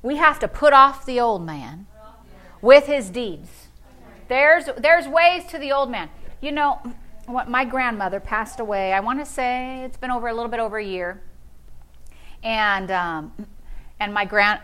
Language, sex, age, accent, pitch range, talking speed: English, female, 40-59, American, 165-240 Hz, 175 wpm